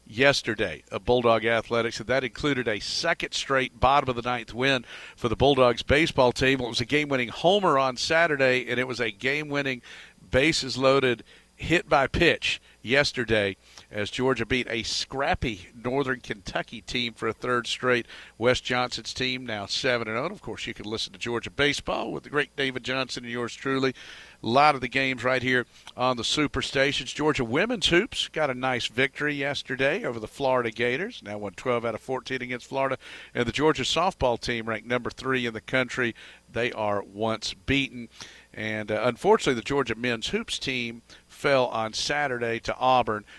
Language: English